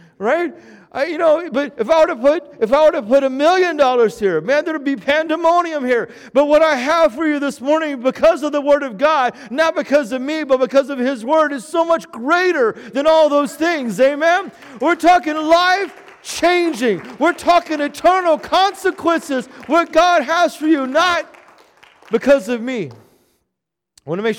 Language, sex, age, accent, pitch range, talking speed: English, male, 40-59, American, 180-300 Hz, 175 wpm